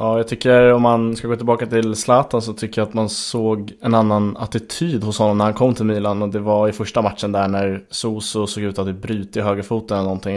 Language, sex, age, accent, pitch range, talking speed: Swedish, male, 20-39, Norwegian, 100-115 Hz, 255 wpm